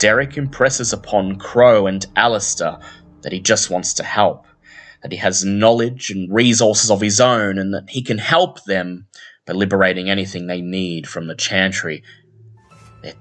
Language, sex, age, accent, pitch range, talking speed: English, male, 20-39, Australian, 90-115 Hz, 165 wpm